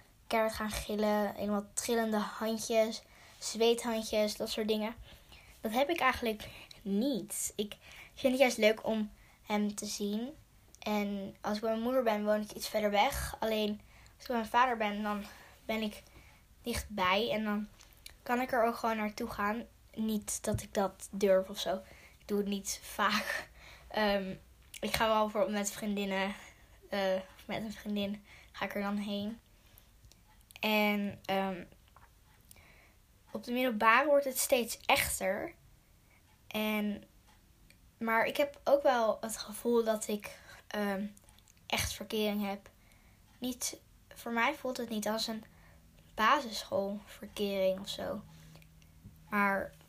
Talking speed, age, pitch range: 140 wpm, 10-29, 200-225 Hz